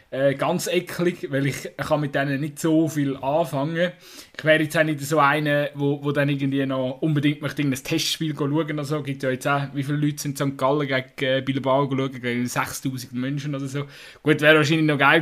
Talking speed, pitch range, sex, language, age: 225 wpm, 140-175 Hz, male, German, 20-39